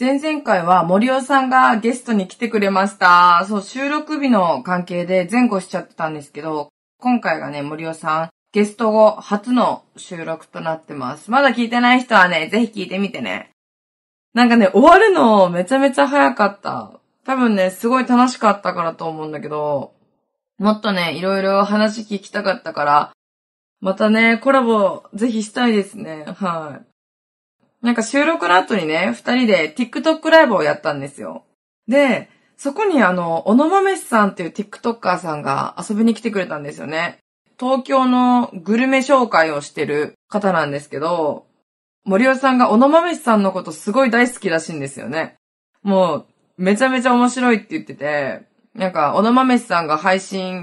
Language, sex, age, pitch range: Japanese, female, 20-39, 175-250 Hz